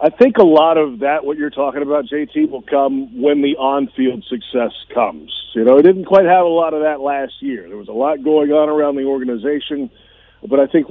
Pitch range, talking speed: 135-175 Hz, 230 wpm